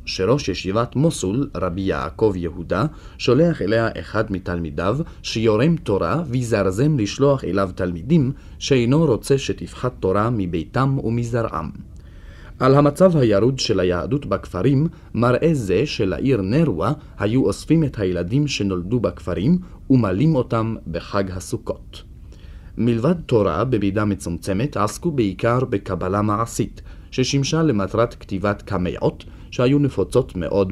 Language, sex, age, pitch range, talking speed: Hebrew, male, 40-59, 95-135 Hz, 110 wpm